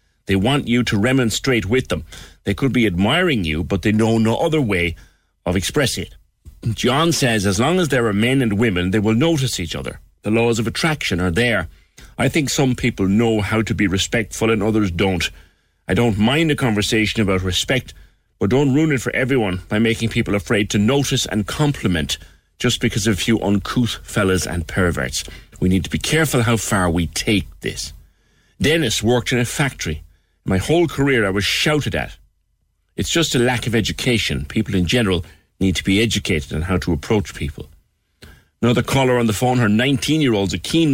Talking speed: 195 wpm